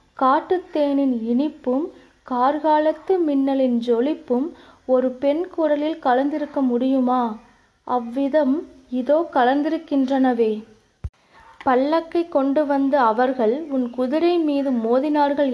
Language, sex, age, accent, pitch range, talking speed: Tamil, female, 20-39, native, 245-290 Hz, 85 wpm